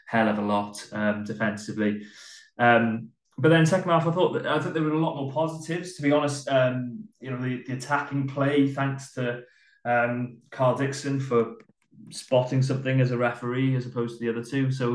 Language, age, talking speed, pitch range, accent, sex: English, 20-39, 195 wpm, 110-130 Hz, British, male